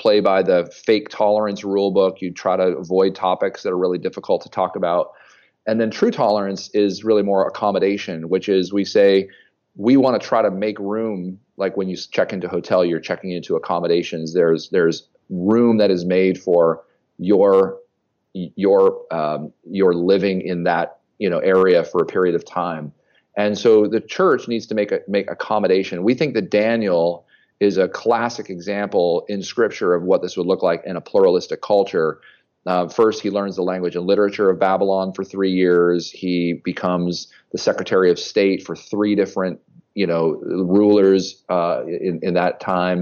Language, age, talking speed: English, 40-59, 180 wpm